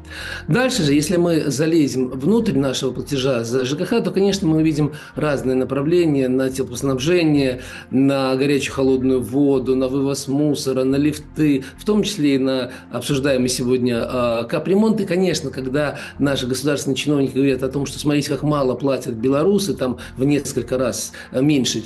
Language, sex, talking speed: Russian, male, 150 wpm